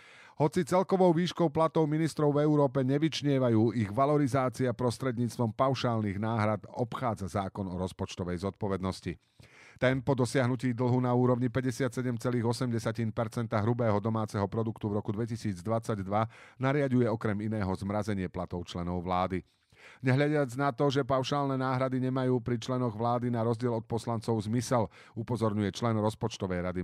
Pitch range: 105-135 Hz